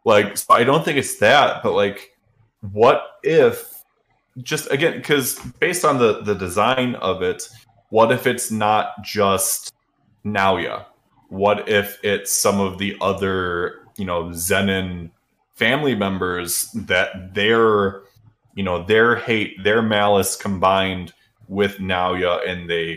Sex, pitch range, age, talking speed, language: male, 95-120 Hz, 20-39, 135 wpm, English